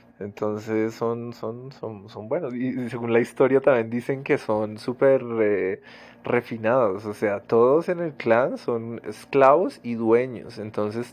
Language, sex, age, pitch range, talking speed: Spanish, male, 20-39, 115-135 Hz, 150 wpm